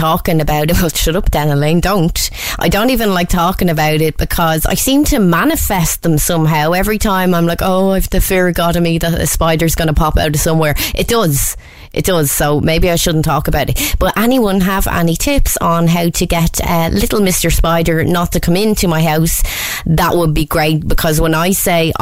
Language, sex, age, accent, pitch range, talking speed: English, female, 20-39, Irish, 155-180 Hz, 225 wpm